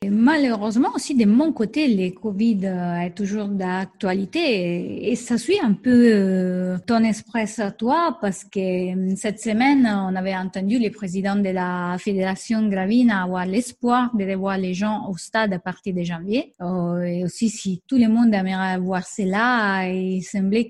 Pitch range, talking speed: 190-235 Hz, 160 wpm